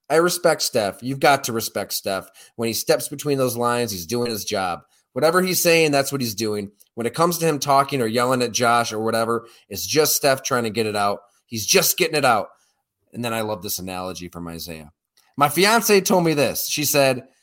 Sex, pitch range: male, 125-195 Hz